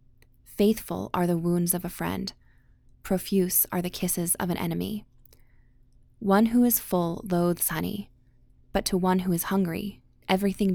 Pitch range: 175-200 Hz